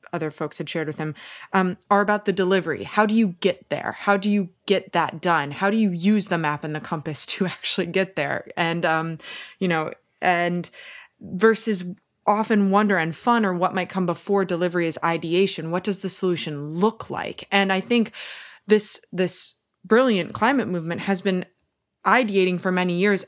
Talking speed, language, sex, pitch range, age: 190 wpm, English, female, 165-195 Hz, 20-39